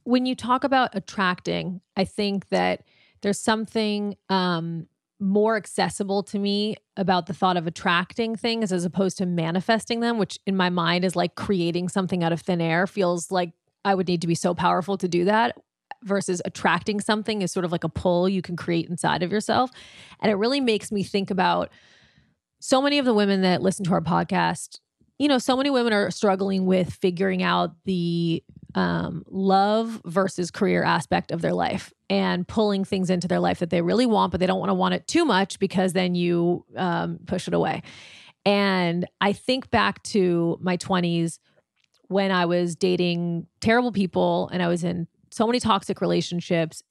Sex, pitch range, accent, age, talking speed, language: female, 180-220 Hz, American, 30-49, 190 wpm, English